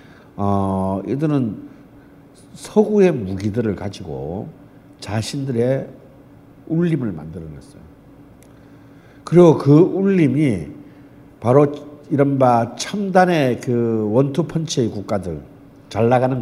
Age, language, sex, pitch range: 60-79, Korean, male, 110-145 Hz